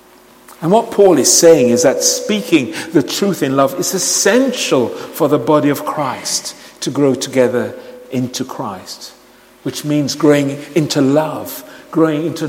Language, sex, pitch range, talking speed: English, male, 130-175 Hz, 150 wpm